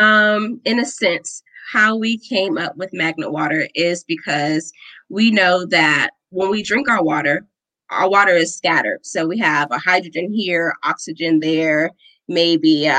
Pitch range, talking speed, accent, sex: 160-200 Hz, 155 wpm, American, female